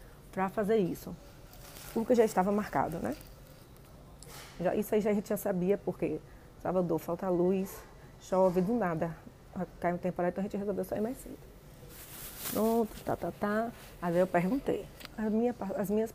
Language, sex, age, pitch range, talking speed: Portuguese, female, 30-49, 165-205 Hz, 165 wpm